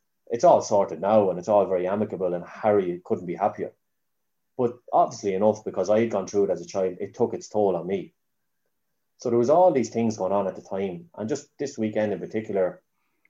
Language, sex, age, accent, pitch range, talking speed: English, male, 30-49, Irish, 90-115 Hz, 220 wpm